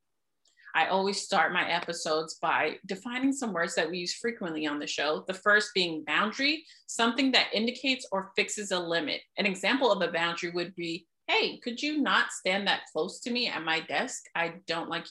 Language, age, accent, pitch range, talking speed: English, 30-49, American, 175-255 Hz, 195 wpm